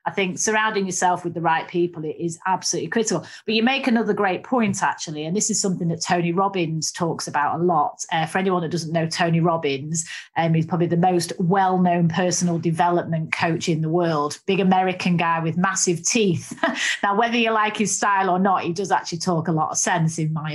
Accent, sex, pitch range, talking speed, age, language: British, female, 170-205 Hz, 215 wpm, 30-49, English